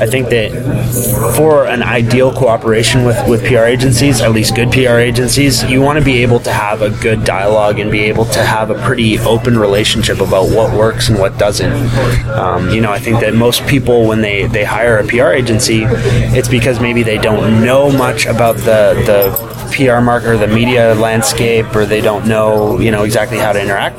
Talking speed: 205 wpm